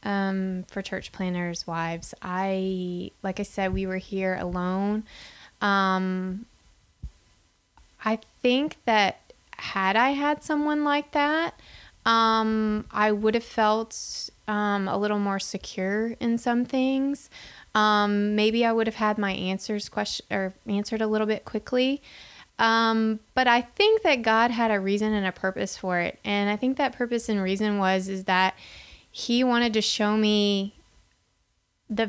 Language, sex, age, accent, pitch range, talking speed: English, female, 20-39, American, 185-225 Hz, 150 wpm